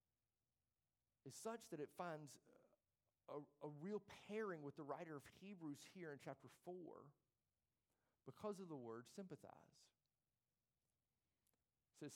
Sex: male